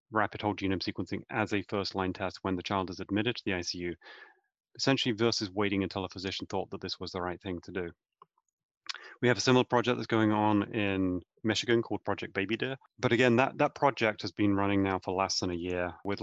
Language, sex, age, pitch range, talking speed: English, male, 30-49, 95-110 Hz, 220 wpm